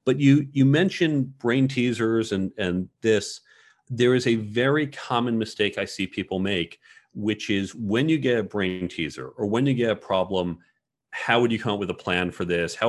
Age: 40-59